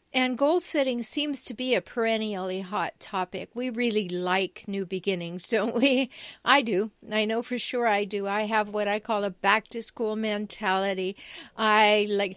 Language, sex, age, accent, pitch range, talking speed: English, female, 50-69, American, 210-255 Hz, 170 wpm